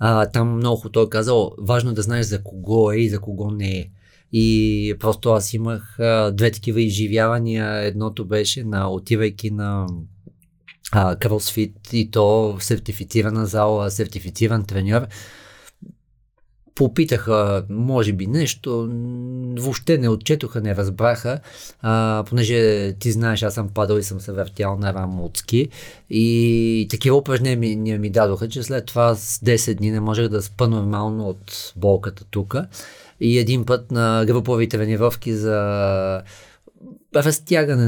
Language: Bulgarian